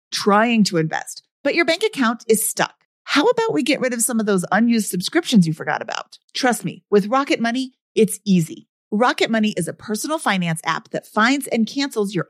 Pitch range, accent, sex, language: 210-290 Hz, American, female, English